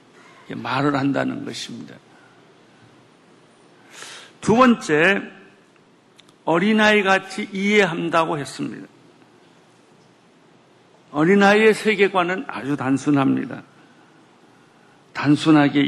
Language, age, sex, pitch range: Korean, 50-69, male, 140-185 Hz